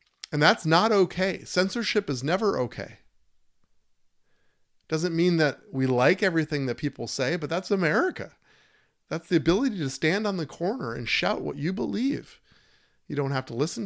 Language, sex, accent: English, male, American